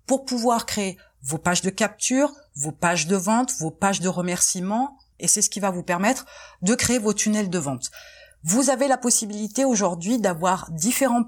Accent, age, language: French, 30-49, French